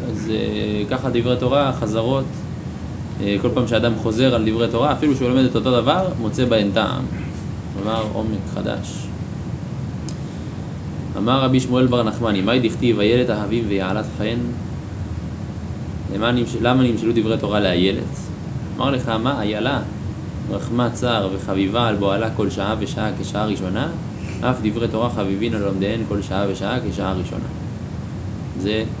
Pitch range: 100-120 Hz